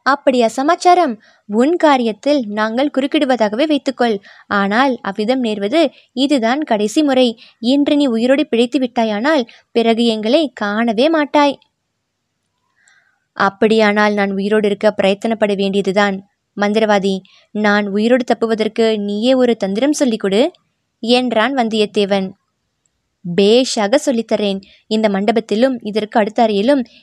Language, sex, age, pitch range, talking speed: Tamil, female, 20-39, 215-280 Hz, 100 wpm